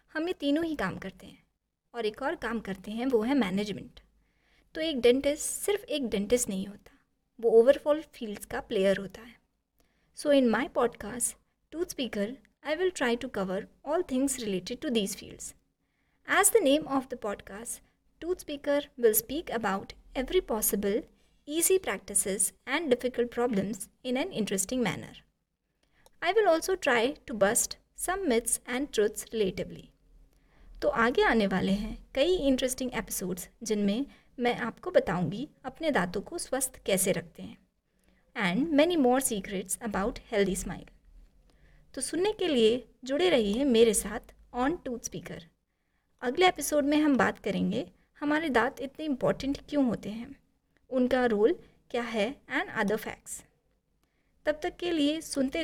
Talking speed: 150 wpm